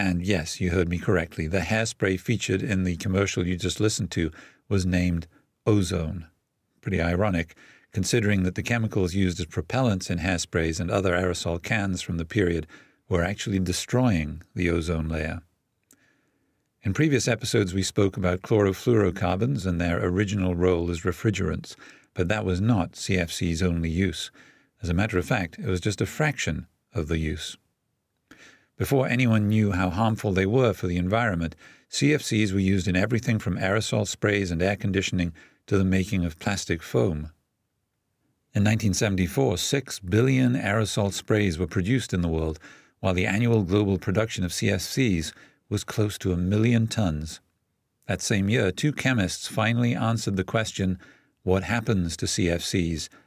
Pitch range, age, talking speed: 90-110 Hz, 50-69, 160 wpm